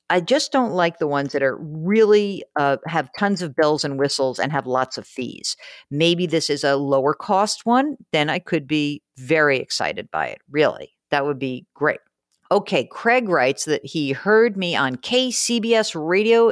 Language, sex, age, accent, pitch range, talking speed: English, female, 50-69, American, 140-200 Hz, 185 wpm